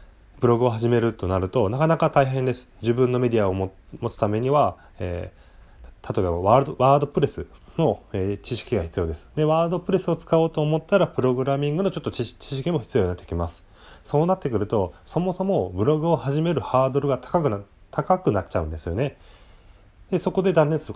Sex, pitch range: male, 90-155 Hz